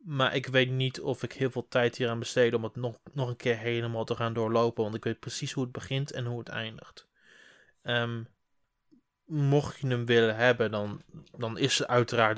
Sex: male